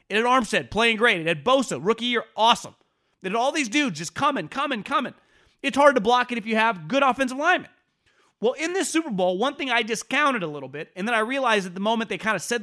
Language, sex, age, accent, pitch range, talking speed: English, male, 30-49, American, 185-240 Hz, 255 wpm